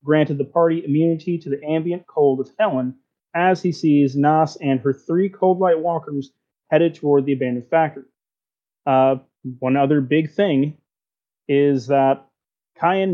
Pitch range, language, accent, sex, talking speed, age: 135-170 Hz, English, American, male, 145 wpm, 30-49